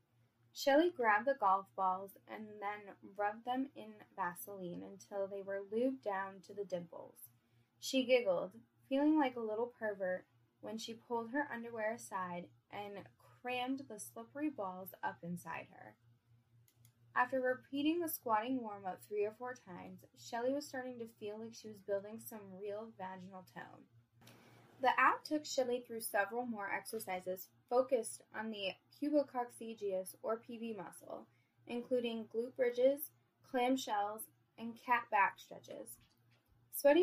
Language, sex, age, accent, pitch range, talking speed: English, female, 10-29, American, 175-245 Hz, 140 wpm